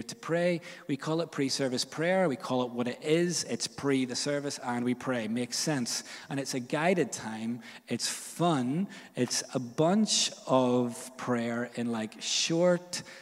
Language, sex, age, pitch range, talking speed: English, male, 20-39, 120-145 Hz, 175 wpm